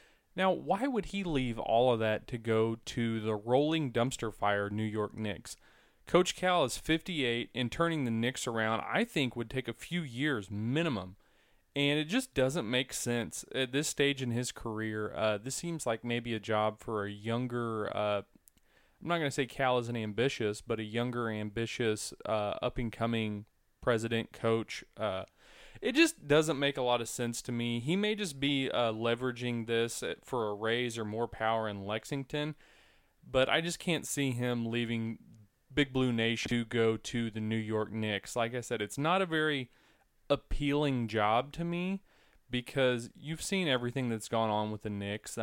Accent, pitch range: American, 110-140 Hz